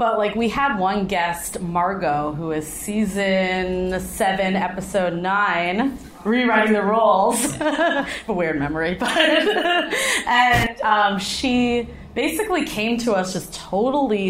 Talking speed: 130 wpm